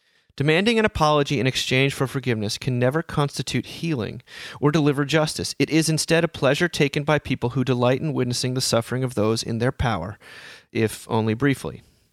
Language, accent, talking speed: English, American, 180 wpm